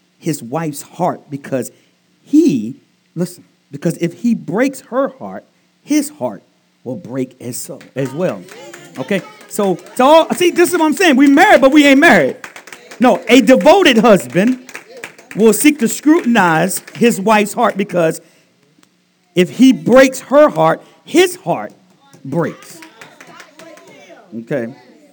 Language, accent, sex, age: English, American, male, 50-69